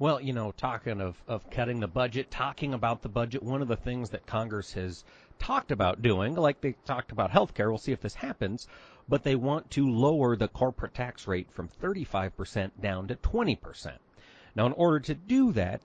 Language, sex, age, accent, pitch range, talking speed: English, male, 40-59, American, 105-140 Hz, 205 wpm